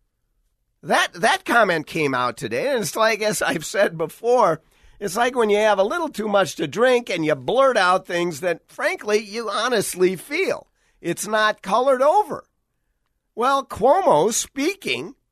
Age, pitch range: 50-69, 155-235 Hz